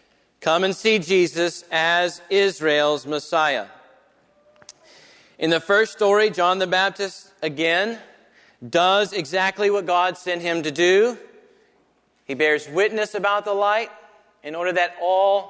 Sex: male